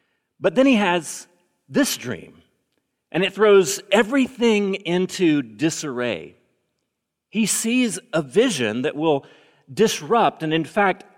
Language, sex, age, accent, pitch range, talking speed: English, male, 40-59, American, 120-175 Hz, 120 wpm